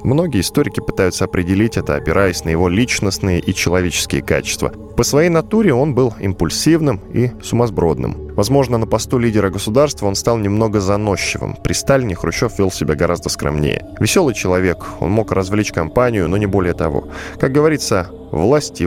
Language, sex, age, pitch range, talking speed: Russian, male, 10-29, 85-120 Hz, 155 wpm